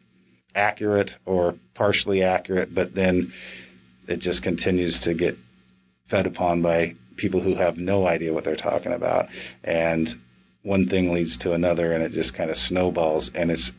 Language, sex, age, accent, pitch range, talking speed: English, male, 40-59, American, 85-95 Hz, 160 wpm